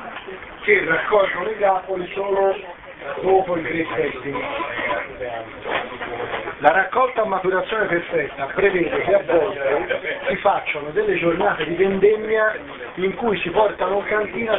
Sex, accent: male, native